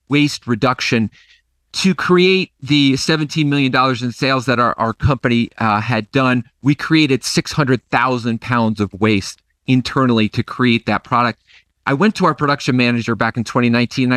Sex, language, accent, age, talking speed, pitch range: male, English, American, 40-59, 155 wpm, 115-150 Hz